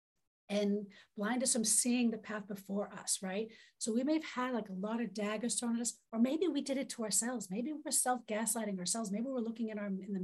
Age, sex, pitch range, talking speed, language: 40-59, female, 200-245 Hz, 240 wpm, English